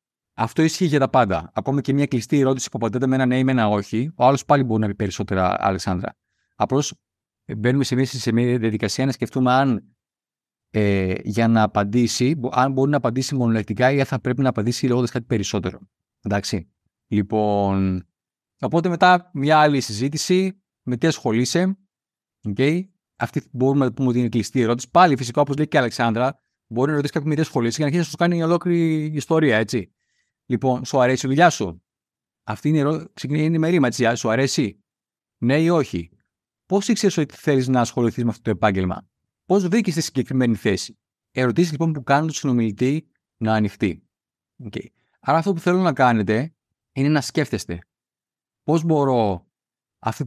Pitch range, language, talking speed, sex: 110-145 Hz, Greek, 175 wpm, male